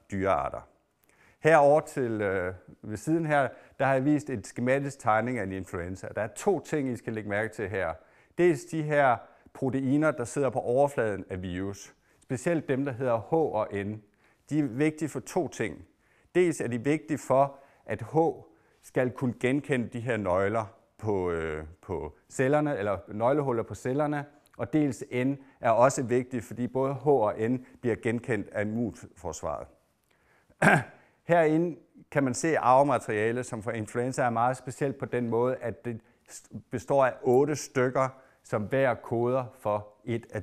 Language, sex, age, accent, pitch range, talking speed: Danish, male, 50-69, native, 110-140 Hz, 165 wpm